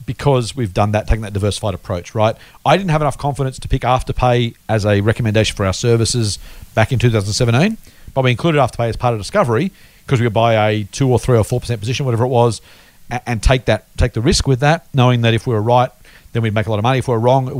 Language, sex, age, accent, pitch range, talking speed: English, male, 40-59, Australian, 105-140 Hz, 255 wpm